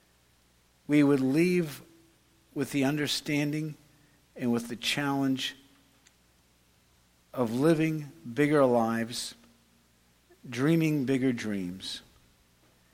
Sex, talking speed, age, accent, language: male, 80 wpm, 60-79, American, English